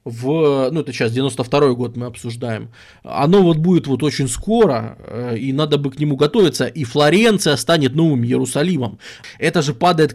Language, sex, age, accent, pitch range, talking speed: Russian, male, 20-39, native, 130-175 Hz, 165 wpm